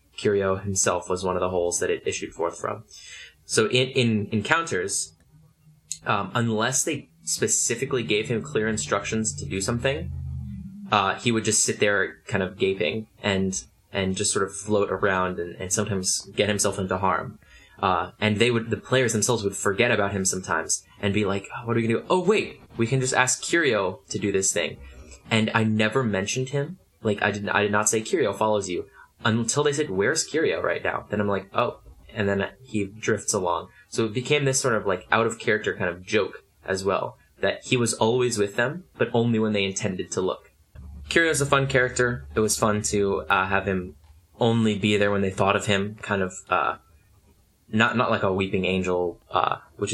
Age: 10-29